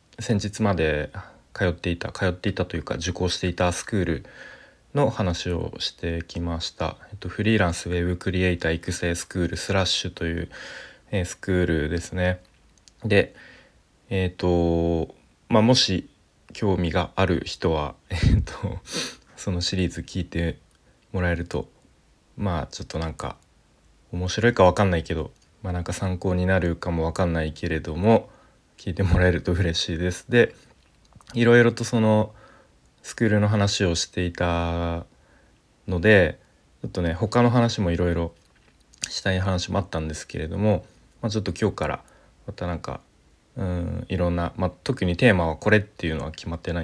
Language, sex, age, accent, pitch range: Japanese, male, 20-39, native, 85-100 Hz